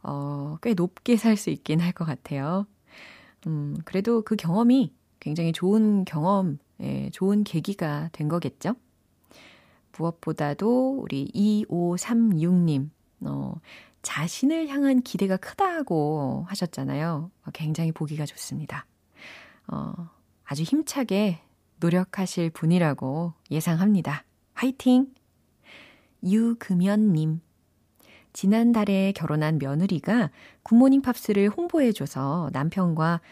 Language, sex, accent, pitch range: Korean, female, native, 155-220 Hz